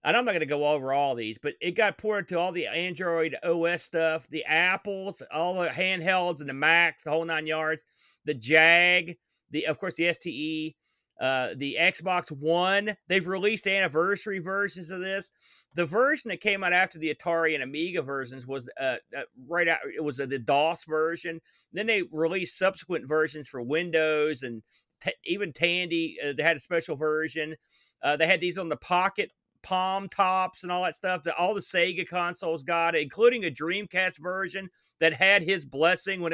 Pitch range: 155-185 Hz